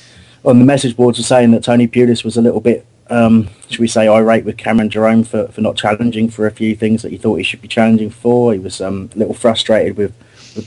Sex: male